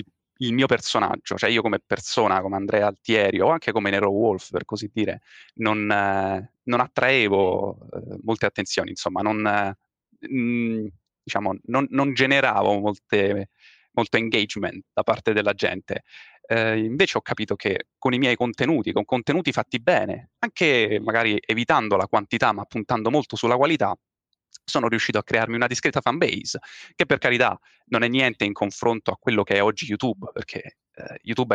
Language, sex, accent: Italian, male, native